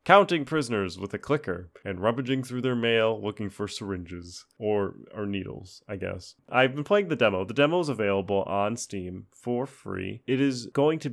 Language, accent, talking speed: English, American, 190 wpm